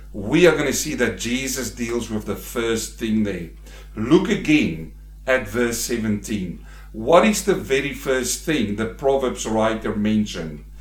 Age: 50-69